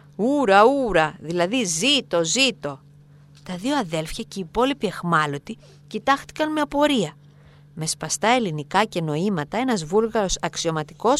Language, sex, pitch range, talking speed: Greek, female, 150-215 Hz, 125 wpm